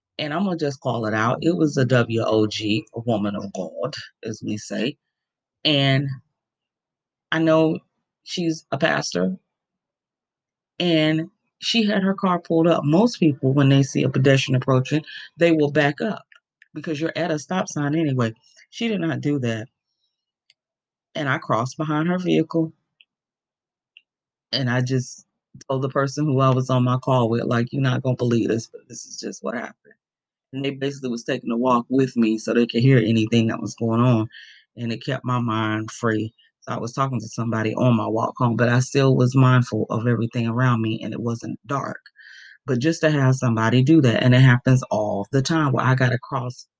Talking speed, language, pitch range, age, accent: 195 wpm, English, 115-155 Hz, 30-49, American